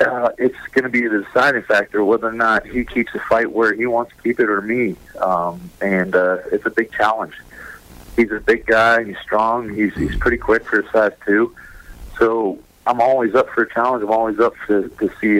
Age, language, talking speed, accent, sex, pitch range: 40-59, English, 220 wpm, American, male, 95-120 Hz